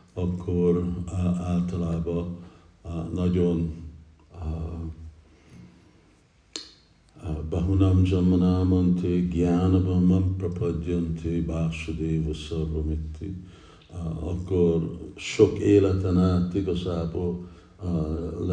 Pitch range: 80-95 Hz